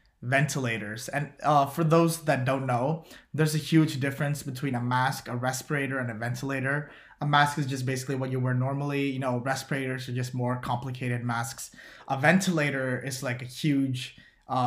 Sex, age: male, 20-39